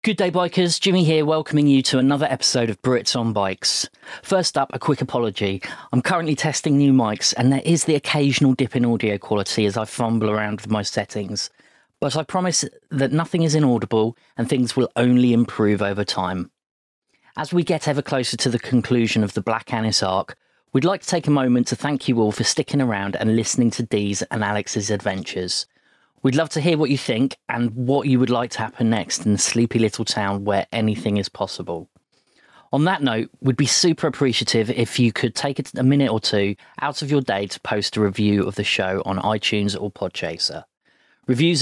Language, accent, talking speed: English, British, 205 wpm